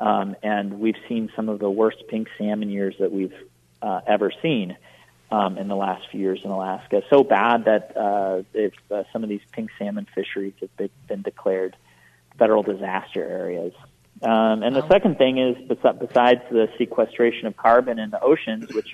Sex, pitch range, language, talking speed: male, 100-125 Hz, English, 175 wpm